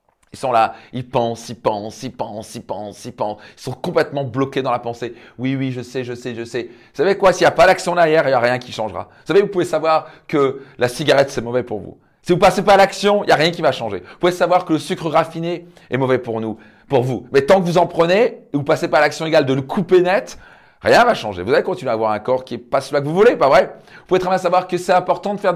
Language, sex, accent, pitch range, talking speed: French, male, French, 135-180 Hz, 305 wpm